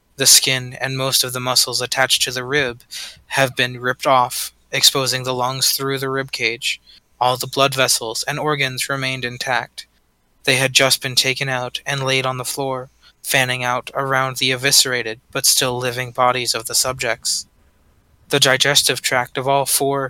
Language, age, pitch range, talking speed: English, 20-39, 125-140 Hz, 175 wpm